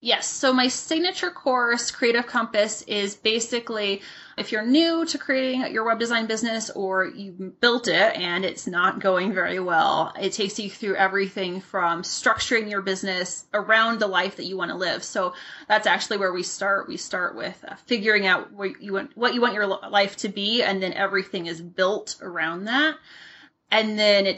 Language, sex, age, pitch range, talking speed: English, female, 20-39, 190-225 Hz, 180 wpm